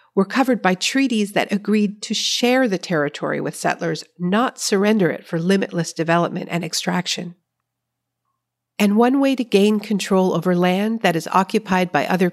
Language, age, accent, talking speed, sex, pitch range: English, 50-69, American, 160 wpm, female, 170-215 Hz